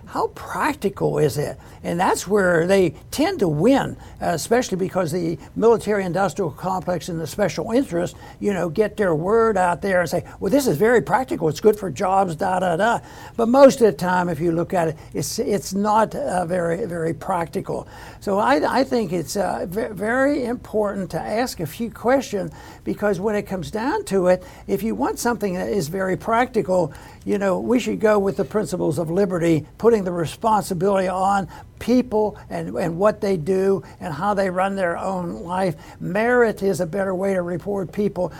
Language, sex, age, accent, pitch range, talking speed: English, male, 60-79, American, 175-210 Hz, 195 wpm